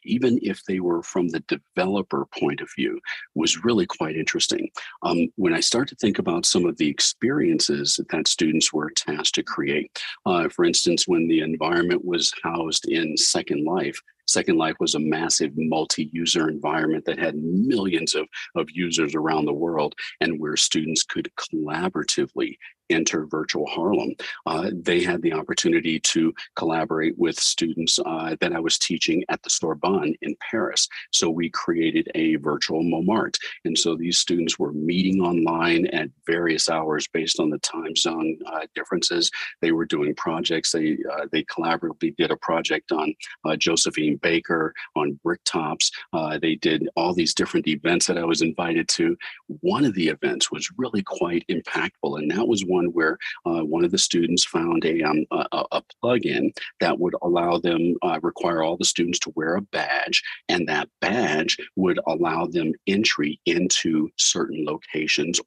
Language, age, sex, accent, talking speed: English, 40-59, male, American, 170 wpm